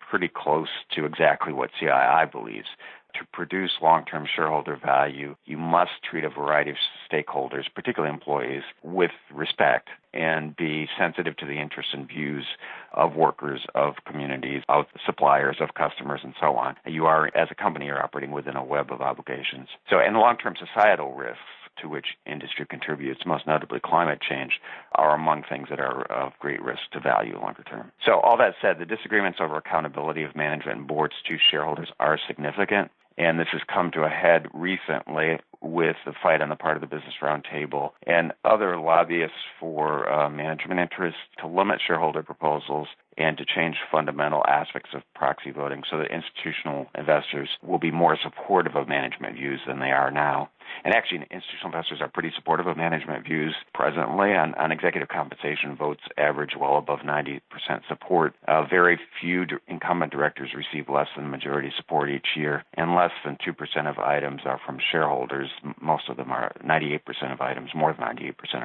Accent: American